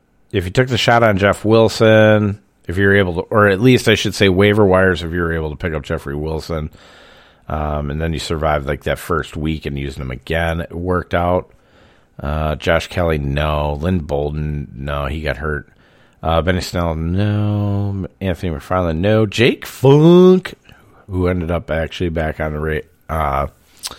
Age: 40-59